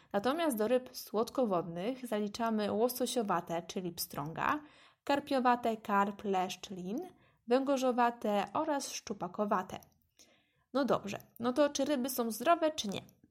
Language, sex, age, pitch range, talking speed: Polish, female, 20-39, 200-265 Hz, 115 wpm